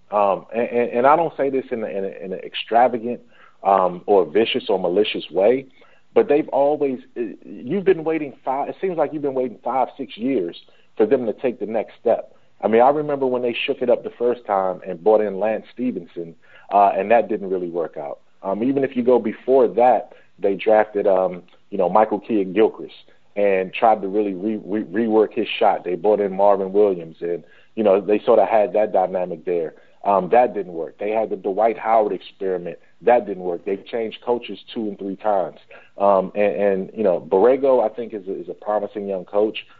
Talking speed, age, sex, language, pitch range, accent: 220 wpm, 40-59, male, English, 95-125 Hz, American